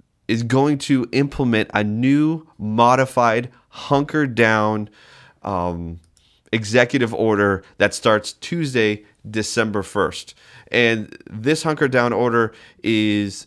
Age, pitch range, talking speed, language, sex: 30-49, 100-125 Hz, 105 wpm, English, male